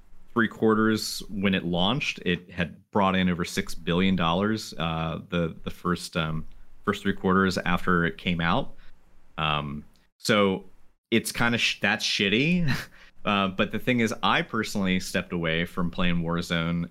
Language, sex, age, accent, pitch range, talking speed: English, male, 30-49, American, 80-100 Hz, 155 wpm